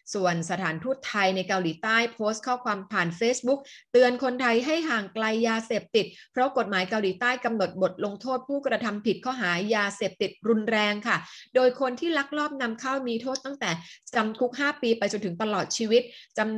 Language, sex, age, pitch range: Thai, female, 20-39, 190-240 Hz